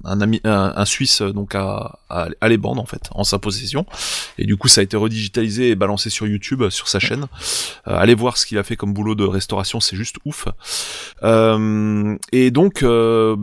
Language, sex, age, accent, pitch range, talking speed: French, male, 30-49, French, 100-125 Hz, 215 wpm